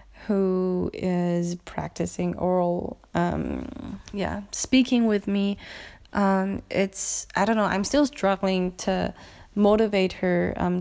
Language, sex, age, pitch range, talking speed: English, female, 20-39, 185-210 Hz, 115 wpm